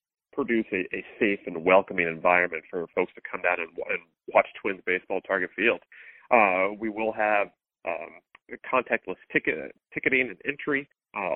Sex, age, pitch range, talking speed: male, 40-59, 100-115 Hz, 155 wpm